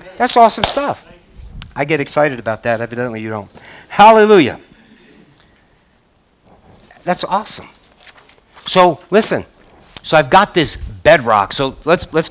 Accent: American